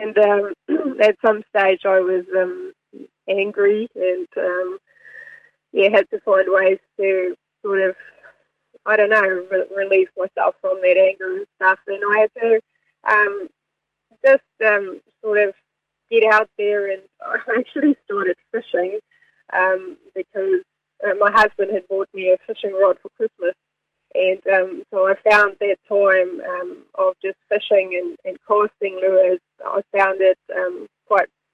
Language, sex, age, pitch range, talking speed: English, female, 20-39, 190-225 Hz, 145 wpm